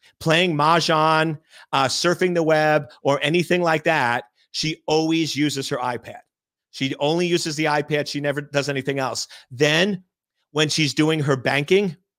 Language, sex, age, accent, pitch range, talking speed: English, male, 40-59, American, 140-165 Hz, 155 wpm